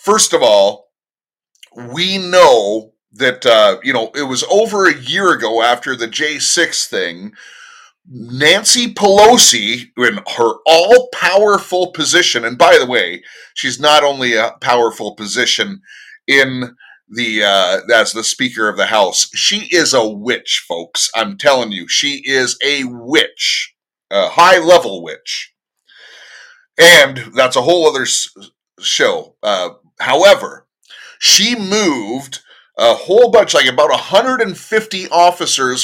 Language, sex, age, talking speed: English, male, 30-49, 135 wpm